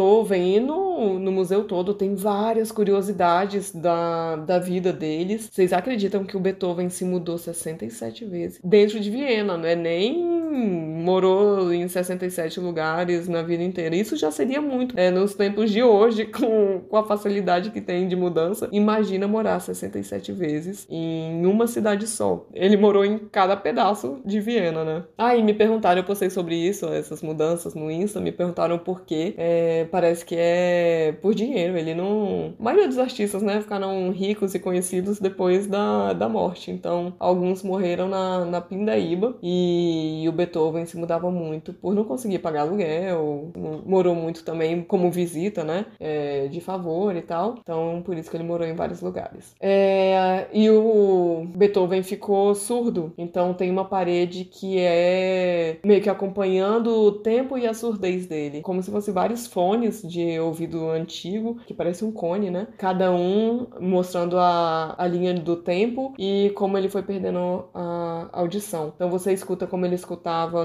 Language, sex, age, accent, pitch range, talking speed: Portuguese, female, 20-39, Brazilian, 170-205 Hz, 165 wpm